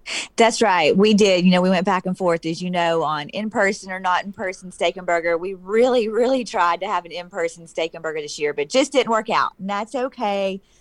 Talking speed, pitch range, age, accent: 240 wpm, 180-220 Hz, 30-49, American